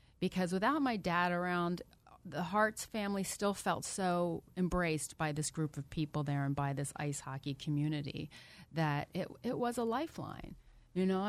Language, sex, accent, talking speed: English, female, American, 170 wpm